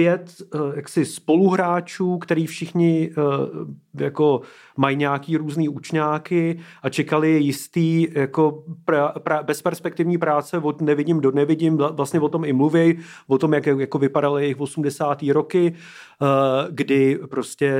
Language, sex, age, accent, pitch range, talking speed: Czech, male, 30-49, native, 140-165 Hz, 120 wpm